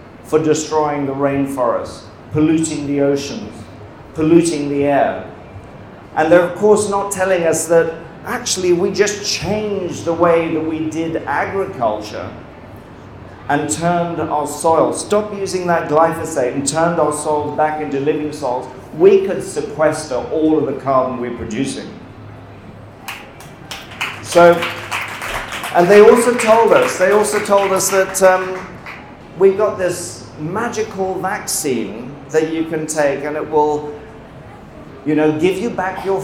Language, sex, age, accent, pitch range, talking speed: English, male, 40-59, British, 145-180 Hz, 135 wpm